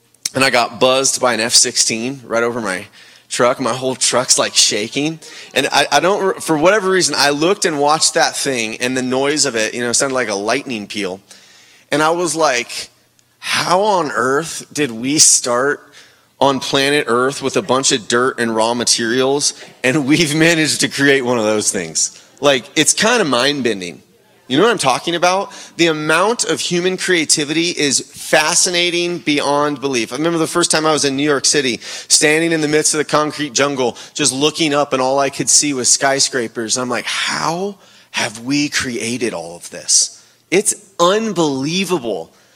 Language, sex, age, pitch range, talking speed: English, male, 30-49, 135-190 Hz, 185 wpm